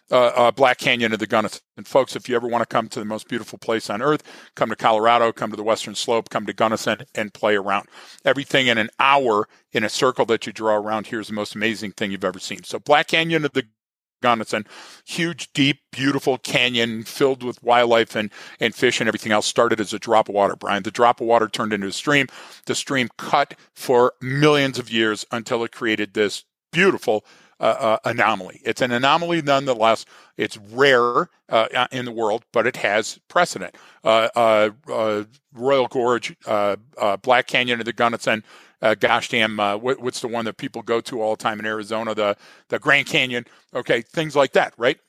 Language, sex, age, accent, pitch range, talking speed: English, male, 50-69, American, 110-130 Hz, 210 wpm